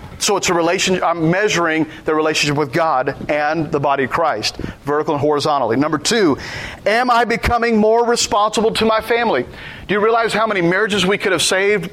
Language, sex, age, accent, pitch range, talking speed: English, male, 40-59, American, 165-210 Hz, 190 wpm